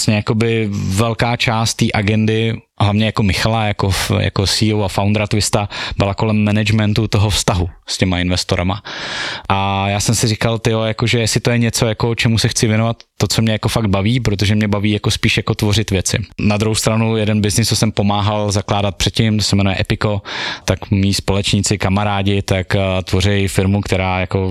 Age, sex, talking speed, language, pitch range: 20-39, male, 180 wpm, Slovak, 100-110 Hz